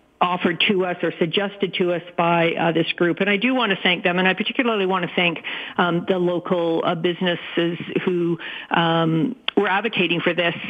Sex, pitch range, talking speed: female, 185-225 Hz, 195 wpm